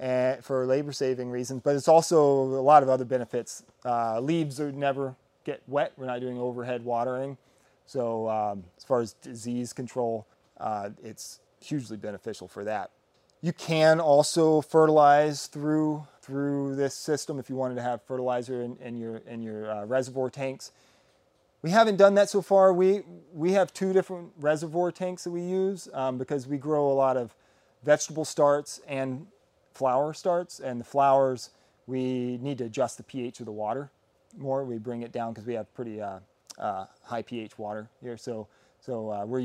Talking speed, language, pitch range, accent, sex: 180 wpm, English, 115-150 Hz, American, male